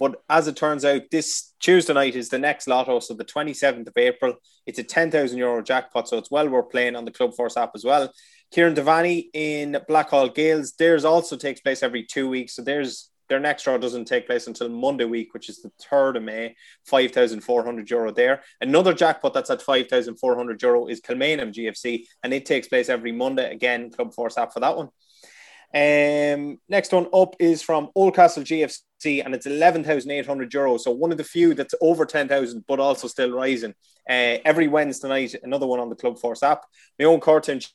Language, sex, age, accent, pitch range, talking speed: English, male, 20-39, Irish, 125-155 Hz, 195 wpm